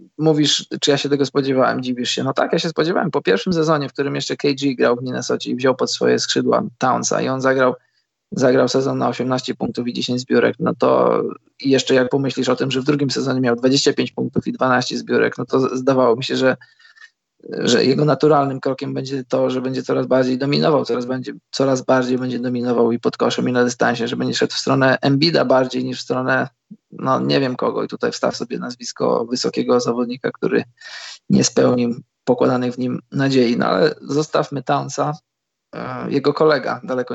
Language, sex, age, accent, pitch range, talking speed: Polish, male, 20-39, native, 125-140 Hz, 195 wpm